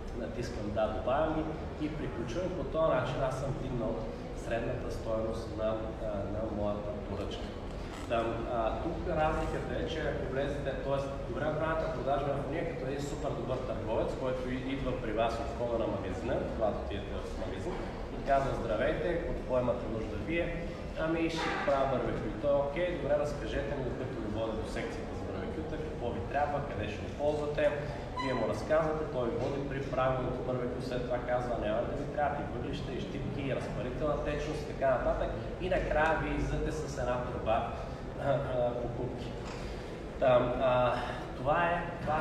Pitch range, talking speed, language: 115-145 Hz, 165 wpm, Bulgarian